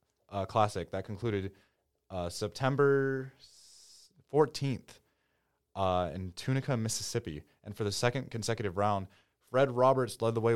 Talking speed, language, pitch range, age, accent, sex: 125 wpm, English, 100-120 Hz, 20-39, American, male